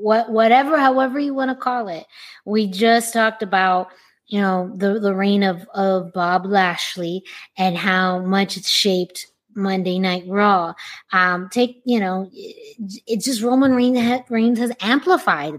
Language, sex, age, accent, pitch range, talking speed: English, female, 20-39, American, 190-230 Hz, 155 wpm